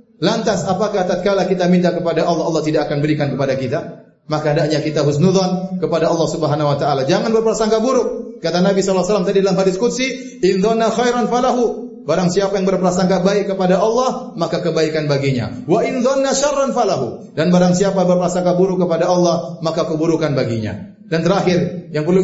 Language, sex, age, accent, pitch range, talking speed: Indonesian, male, 30-49, native, 165-215 Hz, 170 wpm